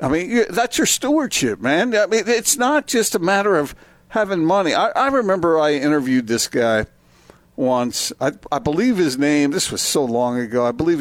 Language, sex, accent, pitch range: English, male, American, 110-160 Hz